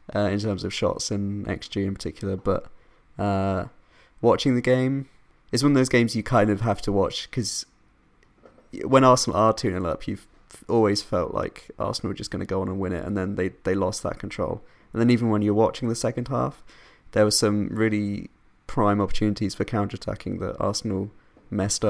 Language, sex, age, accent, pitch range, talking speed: English, male, 20-39, British, 100-110 Hz, 200 wpm